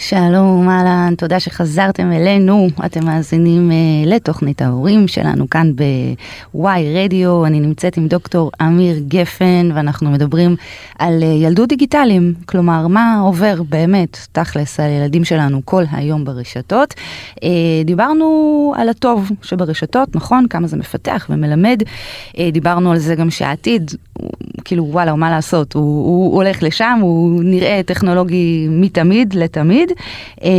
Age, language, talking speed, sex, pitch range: 20-39, Hebrew, 125 wpm, female, 155-190 Hz